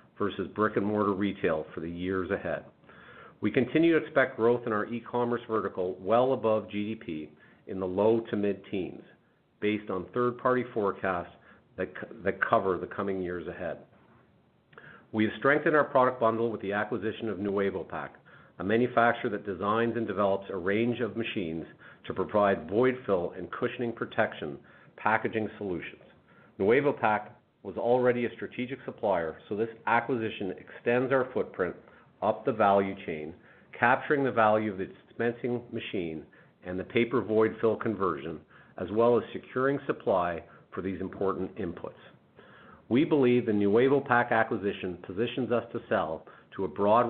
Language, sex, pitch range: English, male, 100-120 Hz